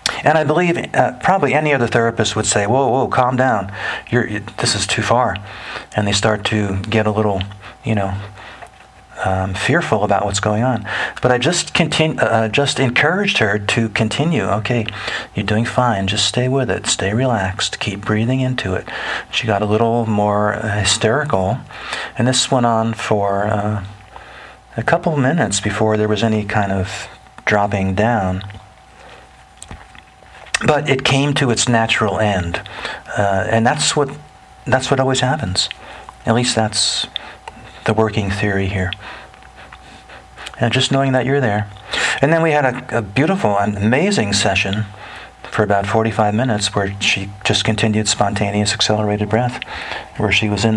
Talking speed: 160 wpm